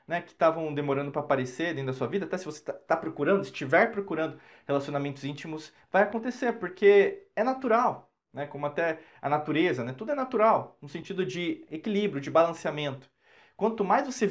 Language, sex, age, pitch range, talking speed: Portuguese, male, 20-39, 145-205 Hz, 175 wpm